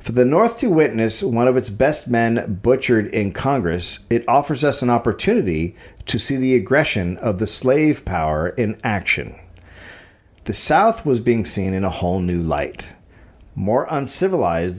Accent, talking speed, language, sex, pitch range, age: American, 160 wpm, English, male, 95-130 Hz, 50-69